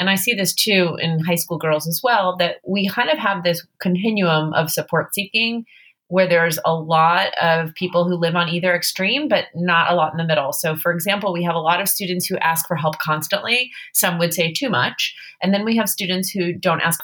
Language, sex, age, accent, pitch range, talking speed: English, female, 30-49, American, 160-195 Hz, 230 wpm